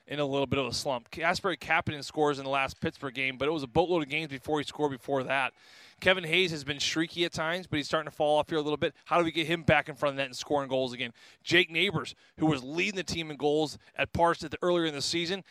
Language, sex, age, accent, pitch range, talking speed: English, male, 20-39, American, 135-160 Hz, 290 wpm